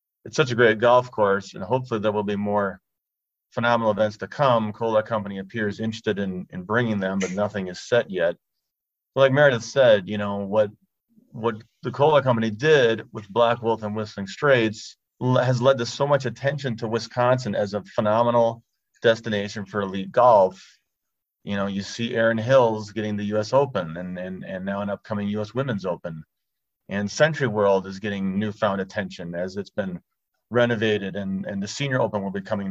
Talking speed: 185 wpm